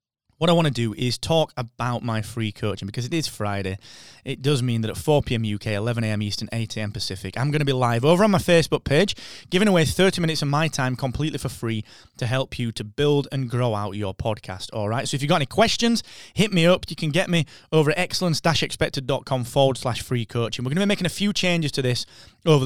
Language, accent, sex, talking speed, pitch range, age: English, British, male, 235 wpm, 115-160 Hz, 20-39